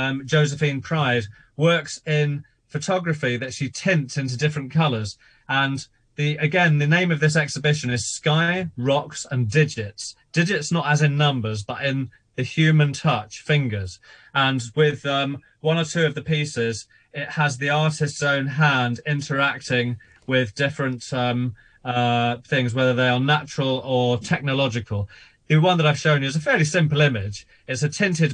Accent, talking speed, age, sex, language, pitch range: British, 165 wpm, 30-49, male, English, 125-155 Hz